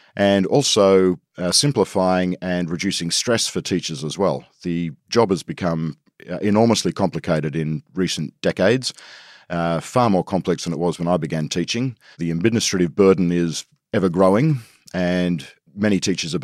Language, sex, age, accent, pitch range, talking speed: English, male, 40-59, Australian, 85-100 Hz, 145 wpm